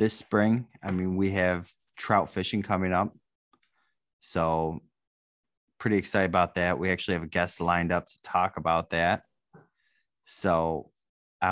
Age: 20-39